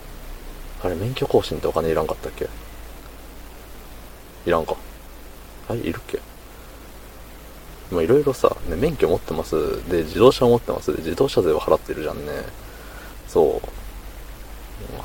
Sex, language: male, Japanese